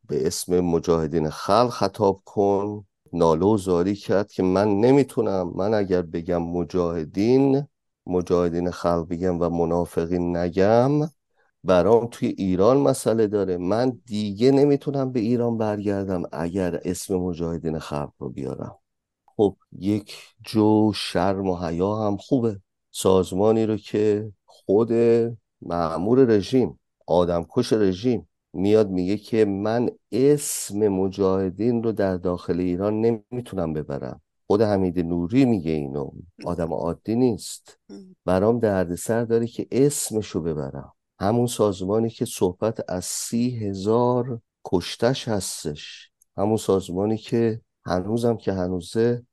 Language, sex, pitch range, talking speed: English, male, 90-115 Hz, 120 wpm